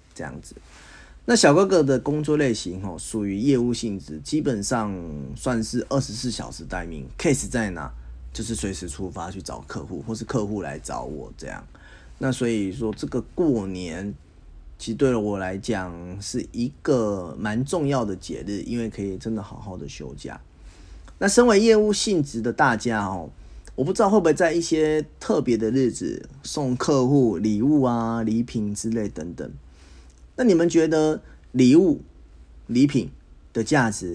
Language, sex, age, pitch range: Chinese, male, 30-49, 90-135 Hz